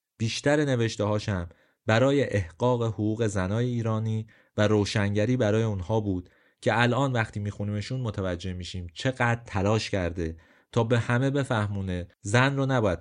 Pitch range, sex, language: 95-120 Hz, male, Persian